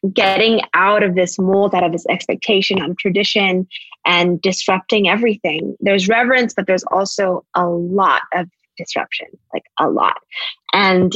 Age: 20-39